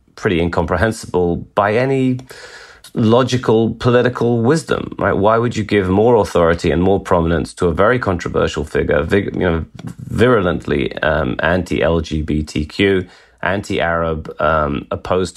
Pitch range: 85-100 Hz